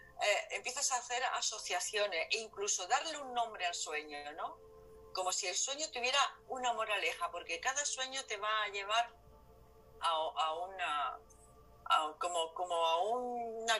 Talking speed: 145 wpm